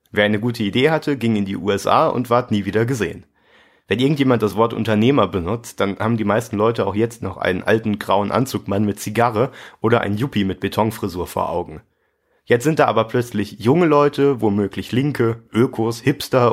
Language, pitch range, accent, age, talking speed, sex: German, 100-125 Hz, German, 30-49, 190 wpm, male